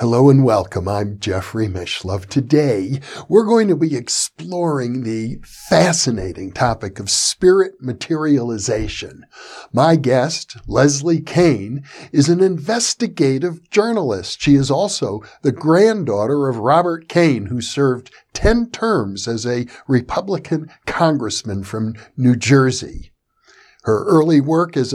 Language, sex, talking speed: English, male, 120 wpm